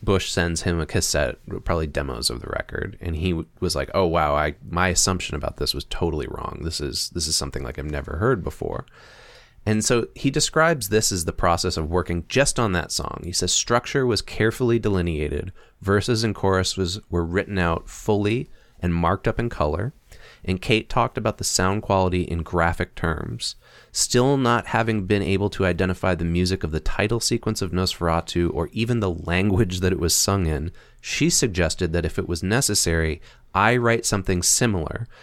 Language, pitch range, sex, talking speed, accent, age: English, 85-115 Hz, male, 195 wpm, American, 30-49